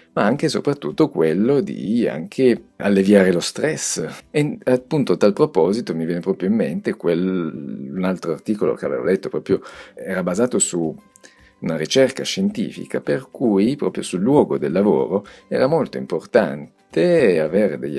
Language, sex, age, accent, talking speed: Italian, male, 50-69, native, 155 wpm